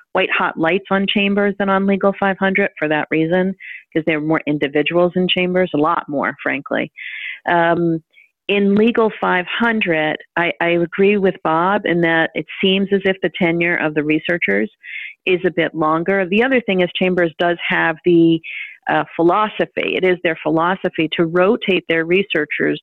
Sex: female